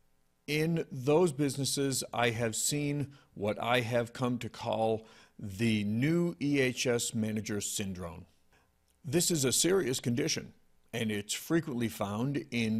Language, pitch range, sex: English, 105-125 Hz, male